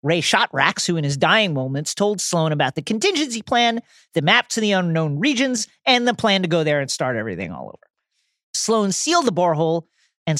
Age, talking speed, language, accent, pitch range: 40-59, 200 wpm, English, American, 150-210 Hz